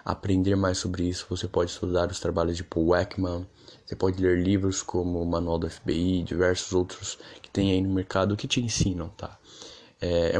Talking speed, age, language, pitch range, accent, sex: 190 wpm, 10-29, Portuguese, 95-125 Hz, Brazilian, male